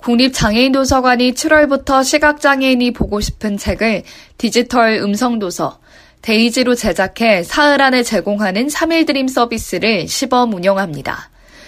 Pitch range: 195-250 Hz